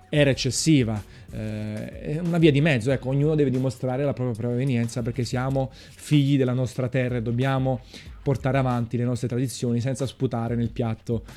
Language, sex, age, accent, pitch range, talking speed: Italian, male, 30-49, native, 120-145 Hz, 170 wpm